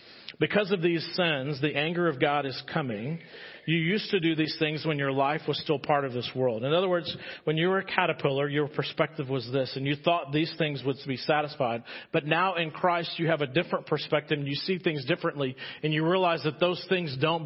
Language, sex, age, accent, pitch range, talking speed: English, male, 40-59, American, 150-180 Hz, 225 wpm